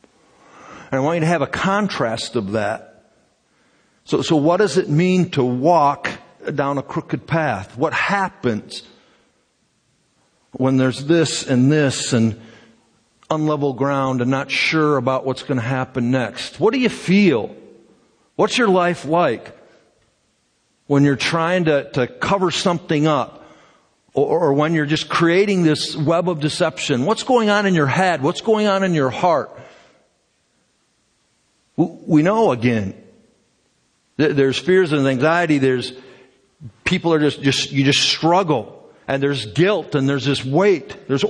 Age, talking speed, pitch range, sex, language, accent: 50-69, 145 wpm, 135-185 Hz, male, English, American